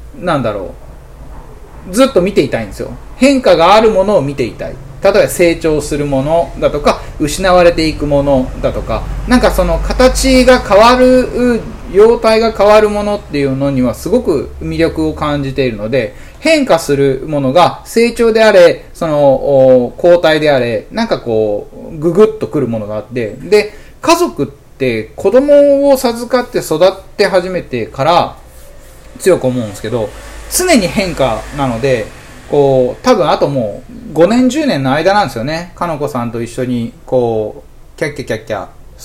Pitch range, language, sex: 130-205 Hz, Japanese, male